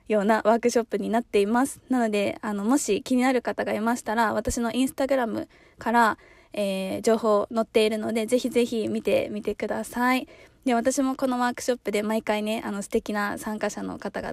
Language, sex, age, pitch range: Japanese, female, 20-39, 210-245 Hz